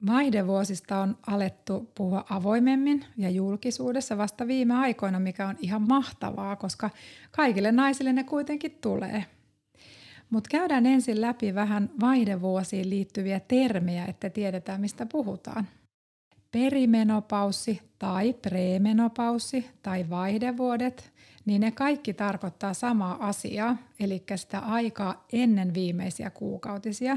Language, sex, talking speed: Finnish, female, 110 wpm